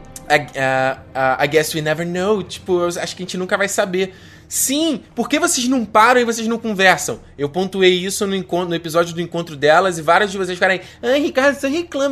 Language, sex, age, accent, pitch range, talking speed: Portuguese, male, 20-39, Brazilian, 155-225 Hz, 225 wpm